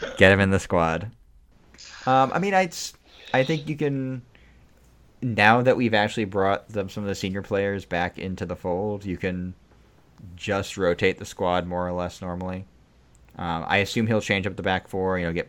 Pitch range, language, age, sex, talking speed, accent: 80-105 Hz, English, 20-39, male, 195 wpm, American